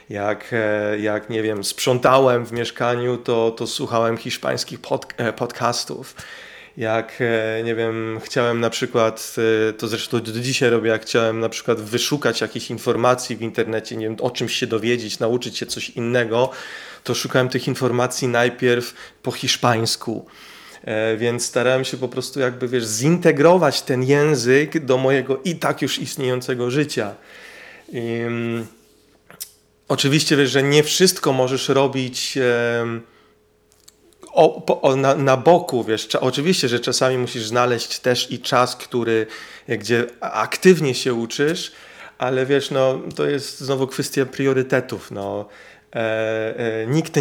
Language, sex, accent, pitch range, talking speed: Polish, male, native, 115-135 Hz, 140 wpm